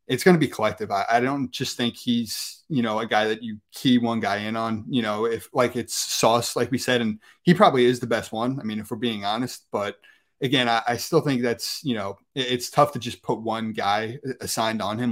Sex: male